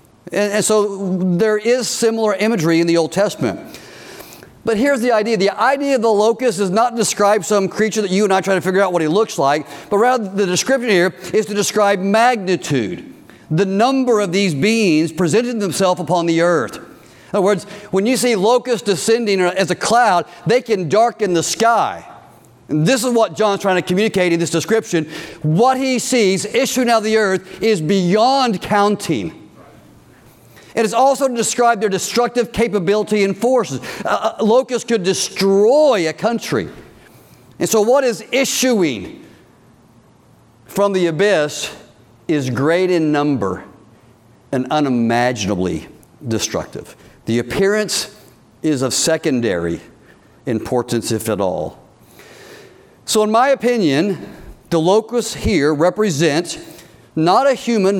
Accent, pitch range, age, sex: American, 165-225 Hz, 50-69, male